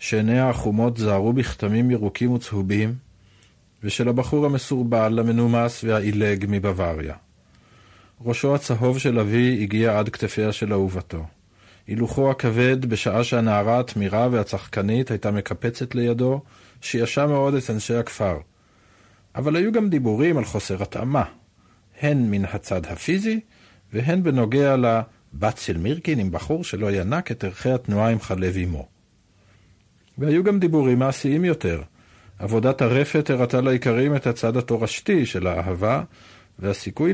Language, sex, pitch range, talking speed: Hebrew, male, 100-130 Hz, 125 wpm